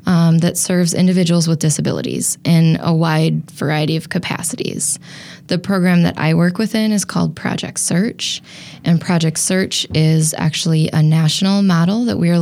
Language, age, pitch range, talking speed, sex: English, 10-29, 160-190 Hz, 160 wpm, female